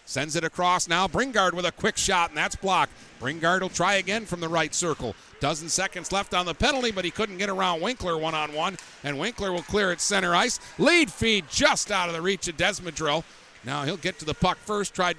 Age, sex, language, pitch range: 50-69, male, English, 145-190 Hz